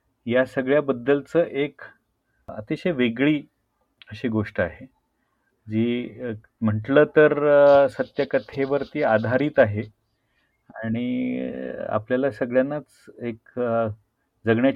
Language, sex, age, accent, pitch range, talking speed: Marathi, male, 40-59, native, 105-135 Hz, 70 wpm